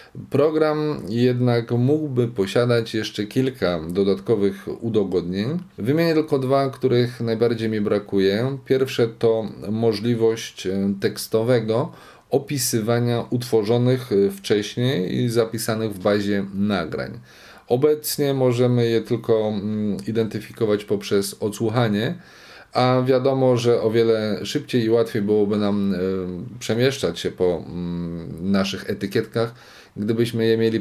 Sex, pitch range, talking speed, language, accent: male, 100-120 Hz, 100 wpm, Polish, native